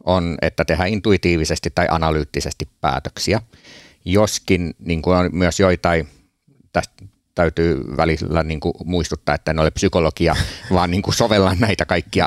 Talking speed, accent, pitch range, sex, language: 120 wpm, native, 80-90 Hz, male, Finnish